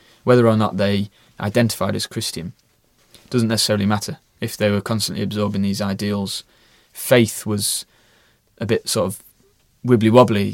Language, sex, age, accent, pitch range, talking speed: English, male, 20-39, British, 100-115 Hz, 135 wpm